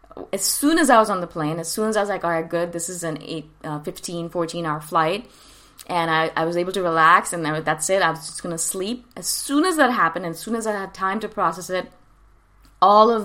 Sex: female